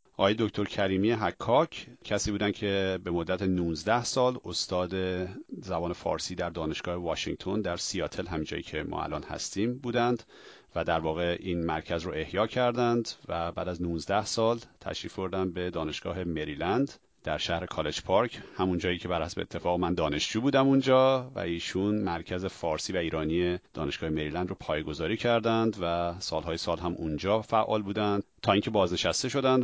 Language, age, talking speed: Persian, 40-59, 160 wpm